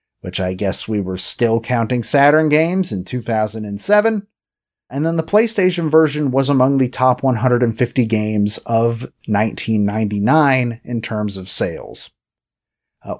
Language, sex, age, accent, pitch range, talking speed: English, male, 30-49, American, 105-140 Hz, 130 wpm